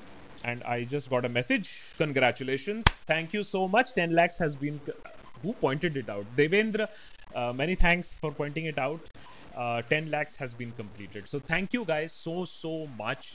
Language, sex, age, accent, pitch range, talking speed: Hindi, male, 30-49, native, 125-170 Hz, 180 wpm